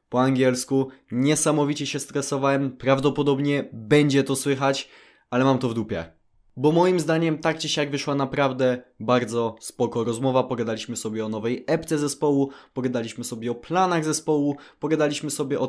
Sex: male